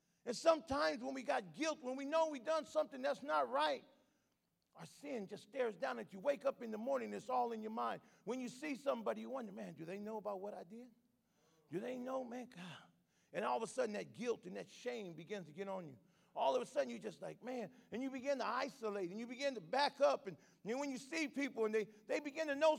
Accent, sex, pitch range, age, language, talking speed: American, male, 195-280 Hz, 40-59, English, 255 wpm